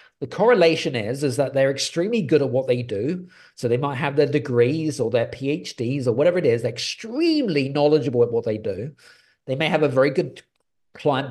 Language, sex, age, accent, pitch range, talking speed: English, male, 40-59, British, 125-165 Hz, 210 wpm